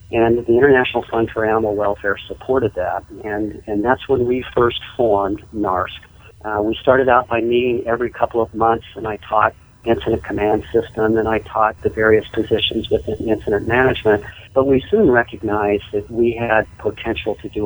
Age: 50-69